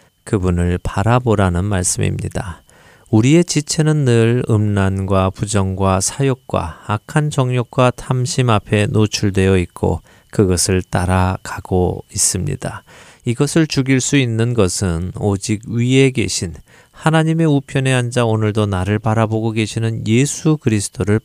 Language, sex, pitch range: Korean, male, 95-125 Hz